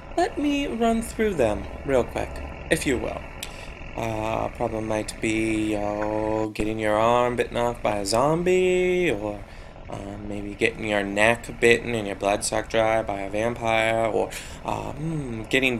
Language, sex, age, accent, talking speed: English, male, 20-39, American, 155 wpm